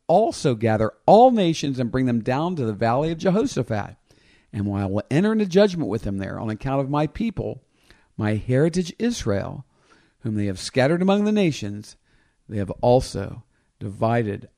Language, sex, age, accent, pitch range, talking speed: English, male, 50-69, American, 120-175 Hz, 175 wpm